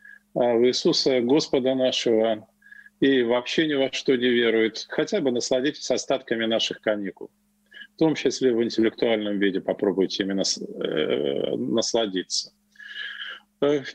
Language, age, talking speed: Russian, 40-59, 115 wpm